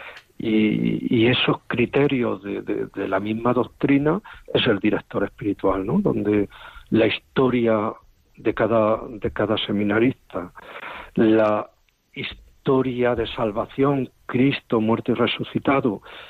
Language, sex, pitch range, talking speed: Spanish, male, 110-150 Hz, 115 wpm